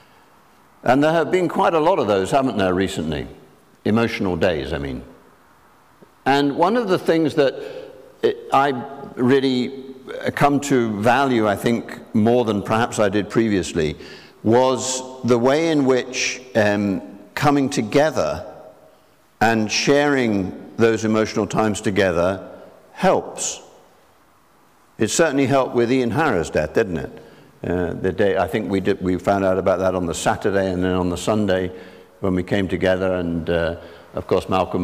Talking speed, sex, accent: 145 wpm, male, British